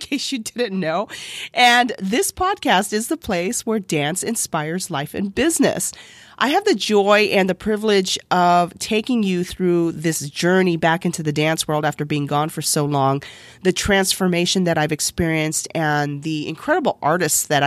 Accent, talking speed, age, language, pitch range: American, 175 wpm, 40-59, English, 160-205 Hz